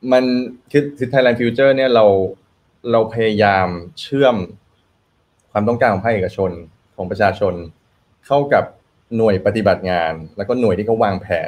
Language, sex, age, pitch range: Thai, male, 20-39, 95-120 Hz